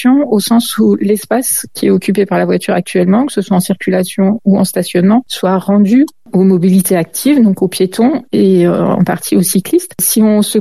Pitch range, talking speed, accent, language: 175-210 Hz, 205 wpm, French, French